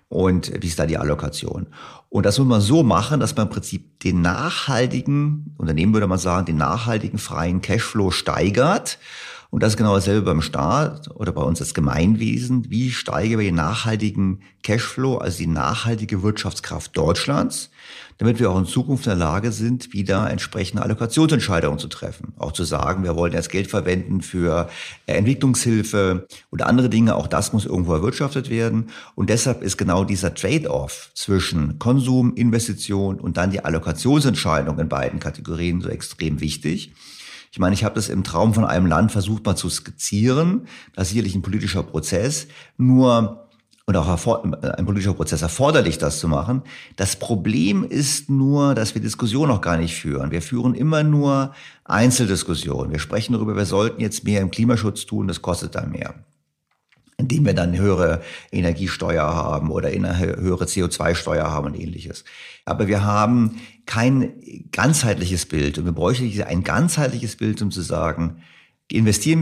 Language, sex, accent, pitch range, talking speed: German, male, German, 85-120 Hz, 165 wpm